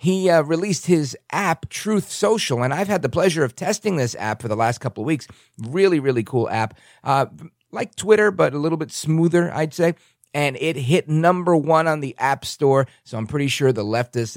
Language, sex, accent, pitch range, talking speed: English, male, American, 115-160 Hz, 215 wpm